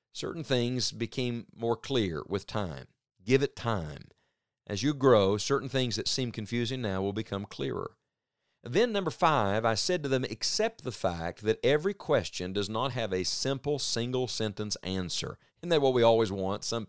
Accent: American